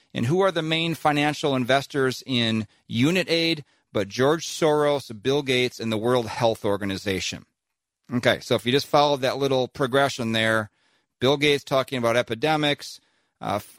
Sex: male